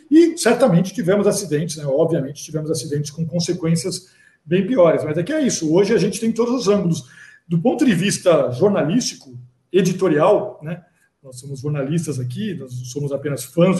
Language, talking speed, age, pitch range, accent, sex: Portuguese, 175 wpm, 50-69, 155-210 Hz, Brazilian, male